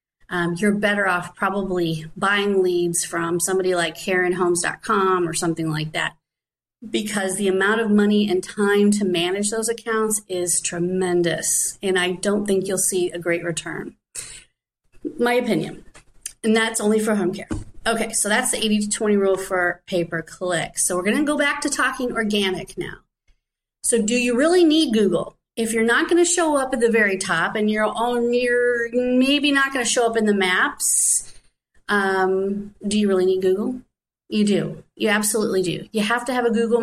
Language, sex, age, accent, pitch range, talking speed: English, female, 30-49, American, 180-230 Hz, 180 wpm